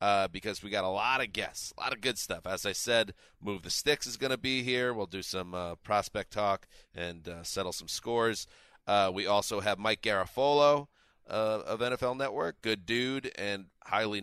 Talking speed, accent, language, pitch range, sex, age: 205 wpm, American, English, 95-110 Hz, male, 30-49